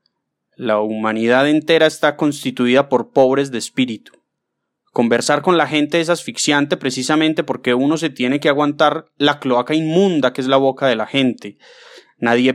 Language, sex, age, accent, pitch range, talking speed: Spanish, male, 20-39, Colombian, 120-150 Hz, 160 wpm